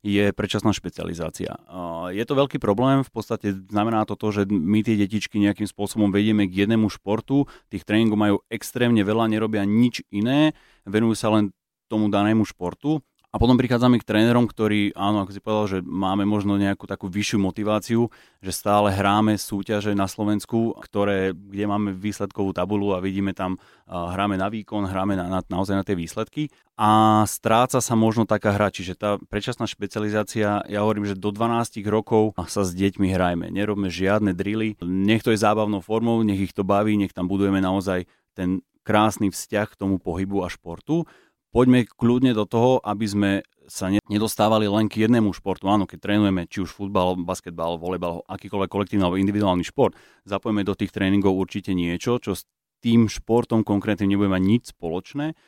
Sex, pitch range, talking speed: male, 95-110 Hz, 175 wpm